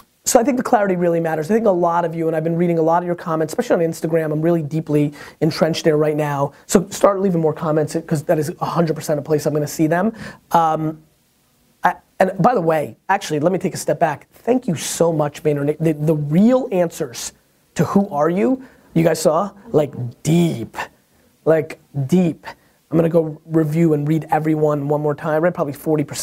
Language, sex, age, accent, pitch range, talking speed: English, male, 30-49, American, 150-180 Hz, 215 wpm